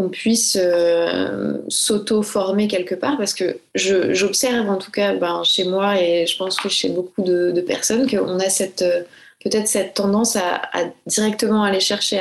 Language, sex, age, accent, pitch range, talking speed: French, female, 20-39, French, 180-210 Hz, 170 wpm